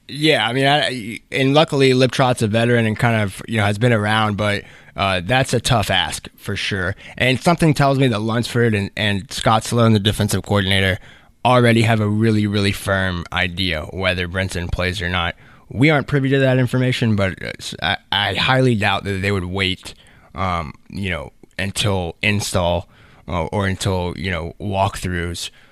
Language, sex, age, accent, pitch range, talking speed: English, male, 20-39, American, 95-120 Hz, 180 wpm